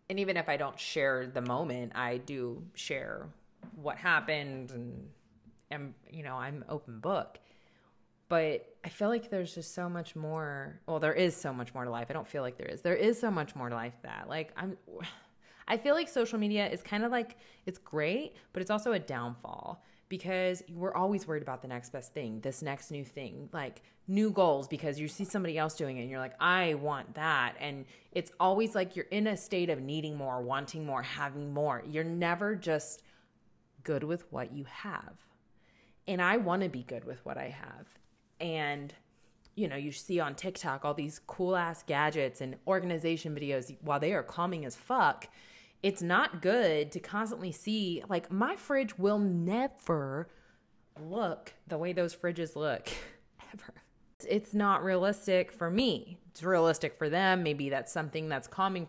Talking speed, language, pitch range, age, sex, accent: 185 wpm, English, 140-185 Hz, 20-39, female, American